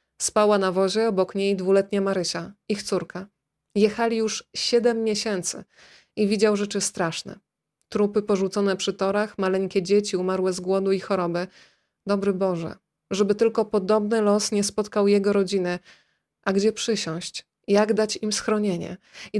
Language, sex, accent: Polish, female, native